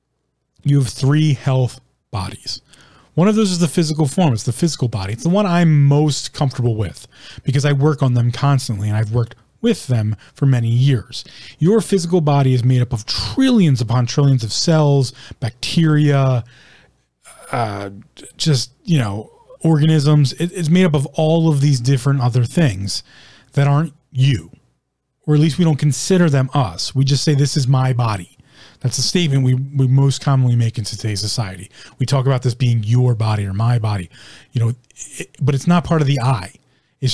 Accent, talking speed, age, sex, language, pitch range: American, 185 wpm, 30-49, male, English, 120-150 Hz